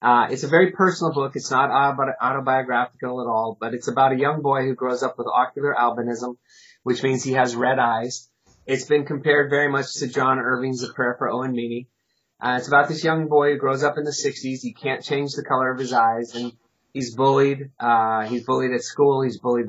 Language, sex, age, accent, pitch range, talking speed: English, male, 30-49, American, 120-140 Hz, 220 wpm